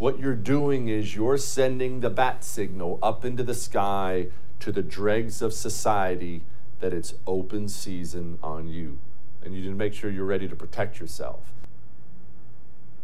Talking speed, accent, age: 160 wpm, American, 50-69